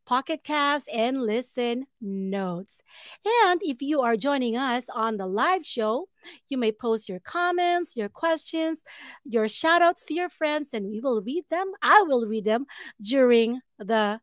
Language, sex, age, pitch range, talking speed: English, female, 40-59, 210-285 Hz, 160 wpm